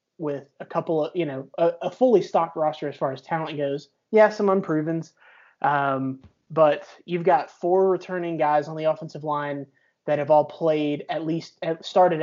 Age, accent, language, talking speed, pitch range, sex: 20-39, American, English, 180 wpm, 150-170 Hz, male